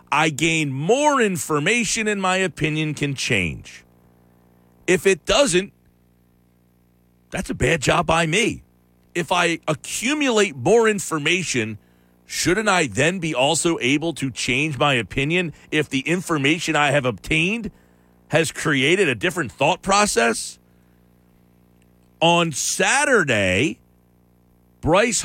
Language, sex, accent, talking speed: English, male, American, 115 wpm